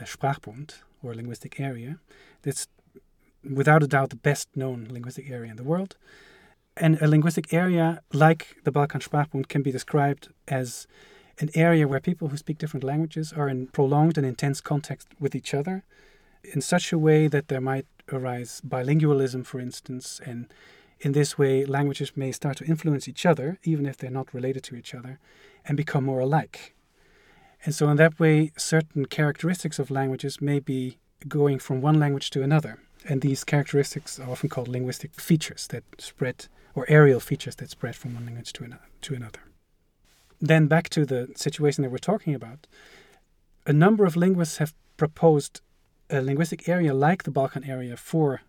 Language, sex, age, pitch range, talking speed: German, male, 30-49, 135-155 Hz, 175 wpm